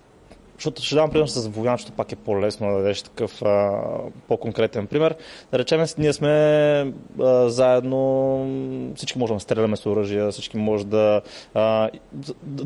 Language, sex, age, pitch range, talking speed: Bulgarian, male, 20-39, 115-145 Hz, 145 wpm